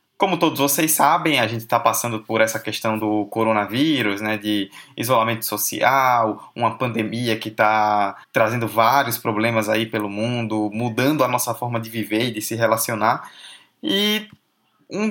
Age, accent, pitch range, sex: 20-39, Brazilian, 115-150 Hz, male